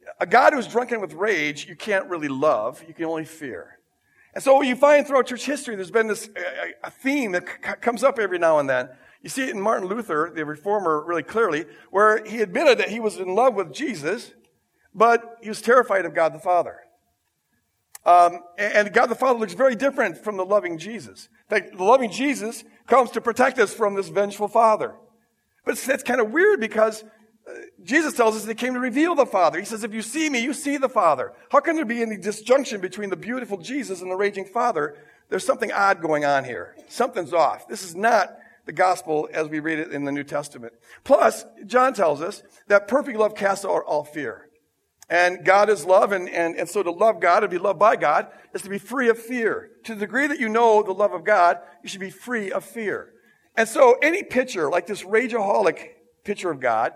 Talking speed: 220 wpm